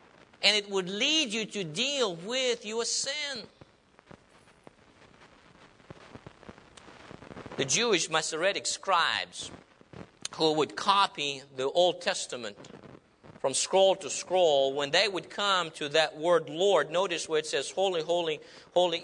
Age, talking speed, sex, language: 50-69, 125 wpm, male, English